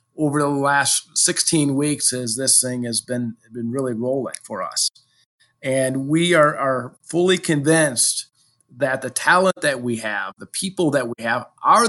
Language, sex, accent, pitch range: English, male, American, 125-155 Hz